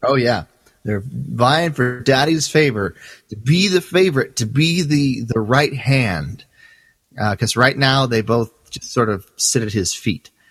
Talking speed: 170 wpm